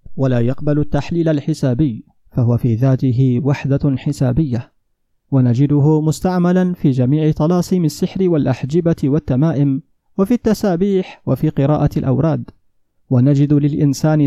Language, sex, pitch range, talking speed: Arabic, male, 135-165 Hz, 100 wpm